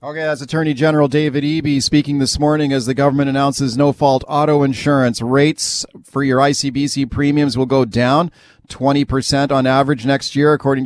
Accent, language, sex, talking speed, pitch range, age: American, English, male, 165 wpm, 130-145 Hz, 40-59